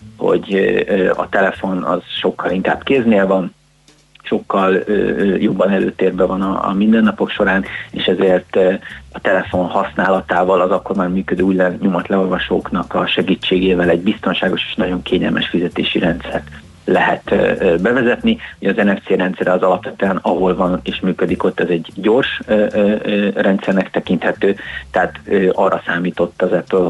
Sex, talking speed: male, 130 wpm